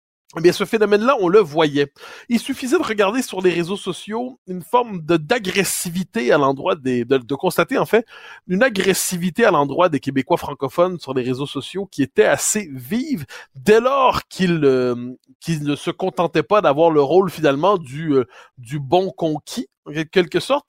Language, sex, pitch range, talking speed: French, male, 140-195 Hz, 180 wpm